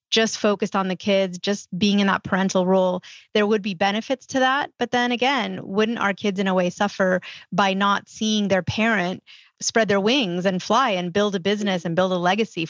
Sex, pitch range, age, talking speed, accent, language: female, 185-220 Hz, 30-49, 215 wpm, American, English